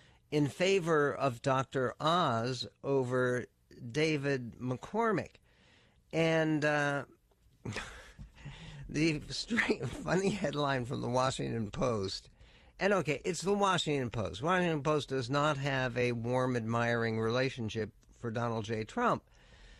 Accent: American